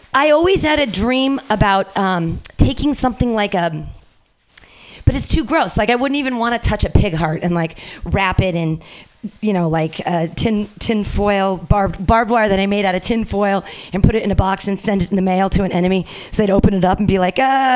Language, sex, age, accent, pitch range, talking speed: English, female, 40-59, American, 190-270 Hz, 240 wpm